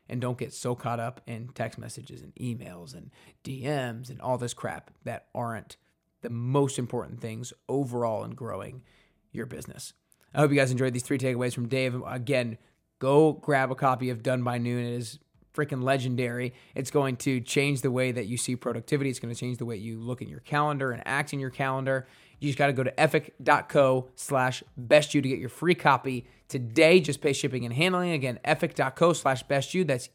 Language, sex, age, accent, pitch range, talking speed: English, male, 20-39, American, 120-145 Hz, 205 wpm